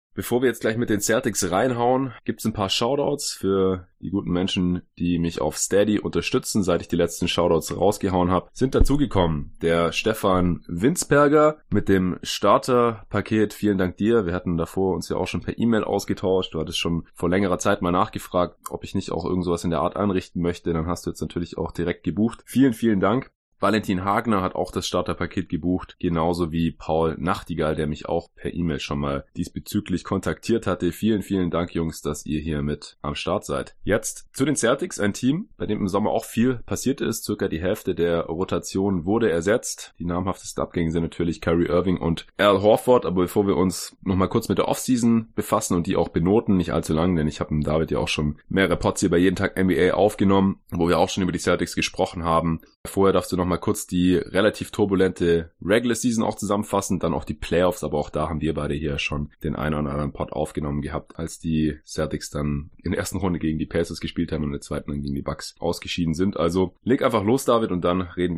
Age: 20-39